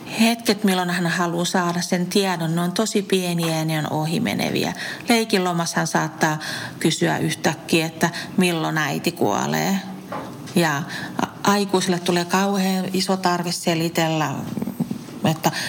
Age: 40-59